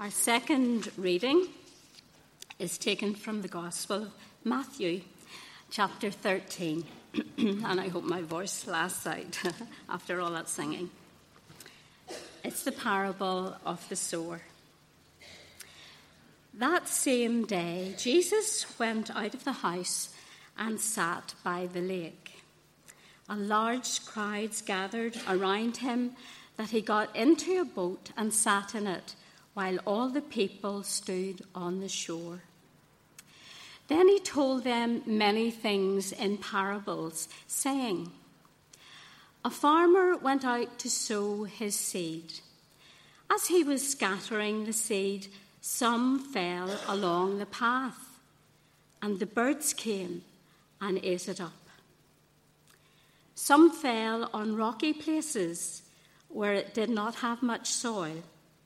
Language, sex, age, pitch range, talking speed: English, female, 60-79, 185-235 Hz, 120 wpm